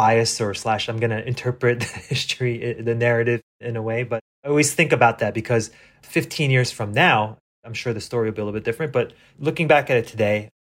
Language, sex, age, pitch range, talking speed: English, male, 20-39, 110-135 Hz, 230 wpm